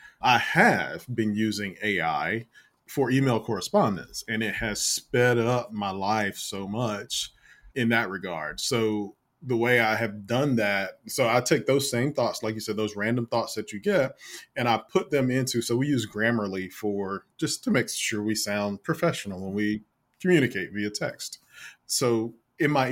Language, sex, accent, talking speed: English, male, American, 175 wpm